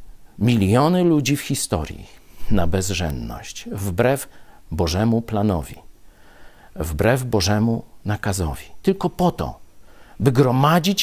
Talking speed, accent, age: 90 wpm, native, 50-69